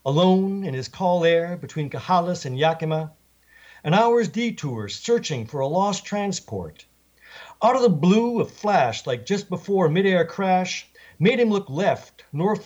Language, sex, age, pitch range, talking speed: English, male, 60-79, 145-200 Hz, 160 wpm